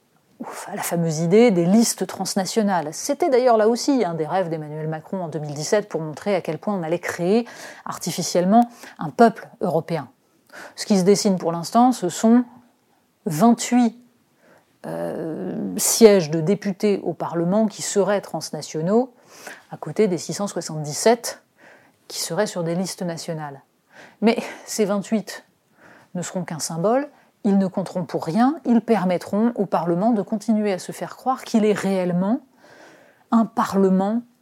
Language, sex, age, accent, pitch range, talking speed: French, female, 30-49, French, 170-225 Hz, 145 wpm